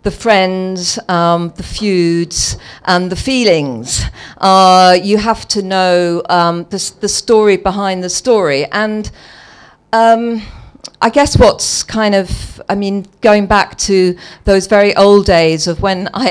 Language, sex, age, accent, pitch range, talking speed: English, female, 50-69, British, 175-205 Hz, 145 wpm